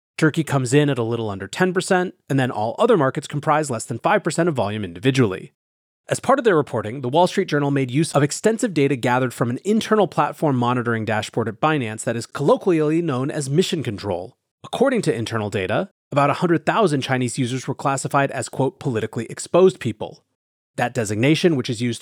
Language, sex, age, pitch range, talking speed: English, male, 30-49, 115-170 Hz, 190 wpm